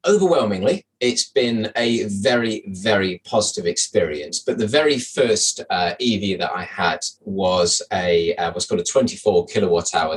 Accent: British